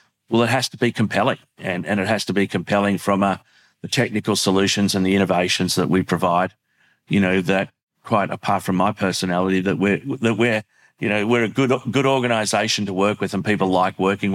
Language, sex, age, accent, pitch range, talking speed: English, male, 40-59, Australian, 95-110 Hz, 210 wpm